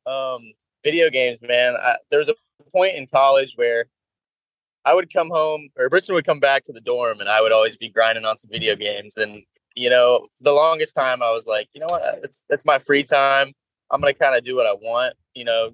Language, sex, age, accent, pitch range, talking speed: English, male, 20-39, American, 115-175 Hz, 230 wpm